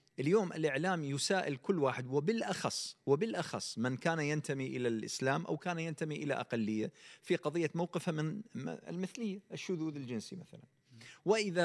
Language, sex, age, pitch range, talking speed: Arabic, male, 40-59, 140-185 Hz, 135 wpm